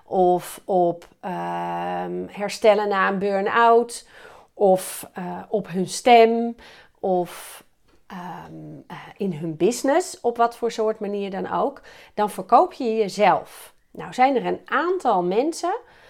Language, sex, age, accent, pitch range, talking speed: Dutch, female, 40-59, Dutch, 195-265 Hz, 125 wpm